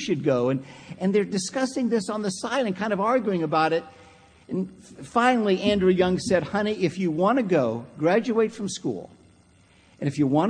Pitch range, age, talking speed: 130-215 Hz, 50-69, 195 wpm